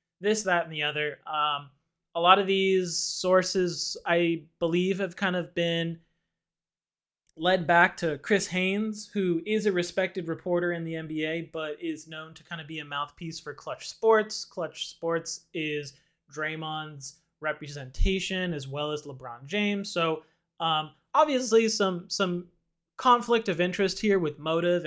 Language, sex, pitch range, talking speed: English, male, 155-185 Hz, 150 wpm